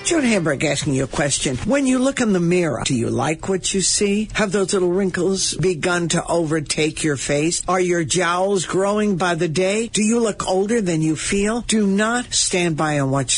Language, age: English, 60-79